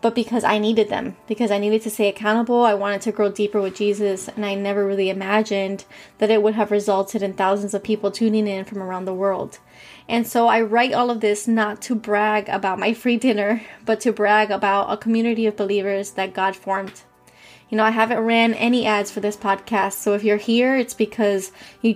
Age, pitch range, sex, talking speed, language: 20-39, 200-220 Hz, female, 220 wpm, English